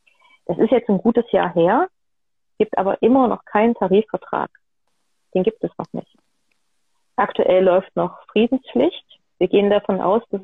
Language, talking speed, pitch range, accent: German, 155 wpm, 185-225 Hz, German